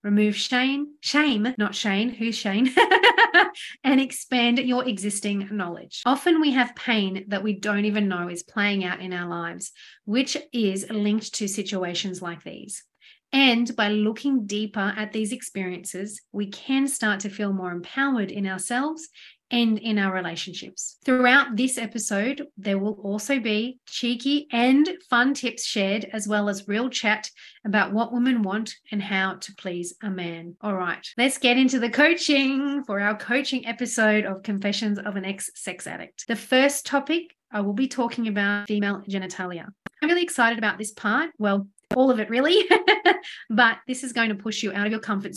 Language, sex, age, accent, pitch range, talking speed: English, female, 40-59, Australian, 200-250 Hz, 175 wpm